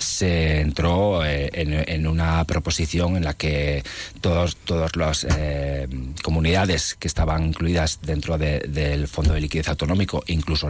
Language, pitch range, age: Spanish, 75-90 Hz, 40-59